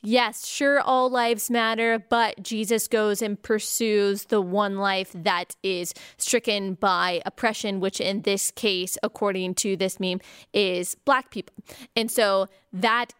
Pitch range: 200-240 Hz